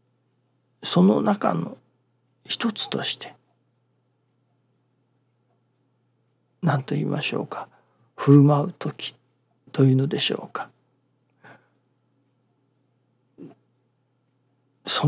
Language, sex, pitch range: Japanese, male, 125-165 Hz